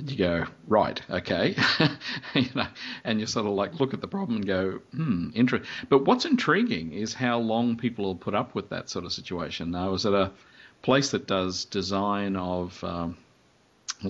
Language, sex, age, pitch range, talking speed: English, male, 50-69, 90-115 Hz, 190 wpm